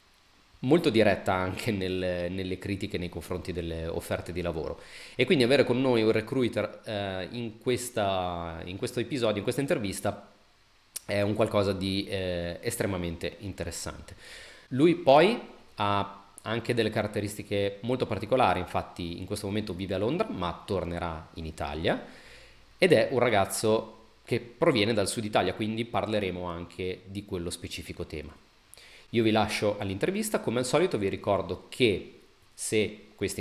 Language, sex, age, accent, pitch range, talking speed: Italian, male, 30-49, native, 90-115 Hz, 145 wpm